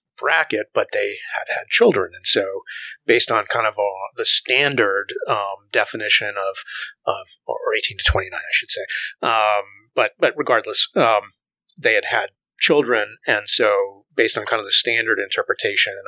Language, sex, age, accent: English, male, 30-49, American